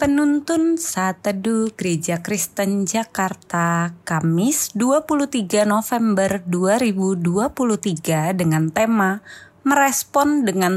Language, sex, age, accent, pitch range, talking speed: Indonesian, female, 20-39, native, 185-255 Hz, 70 wpm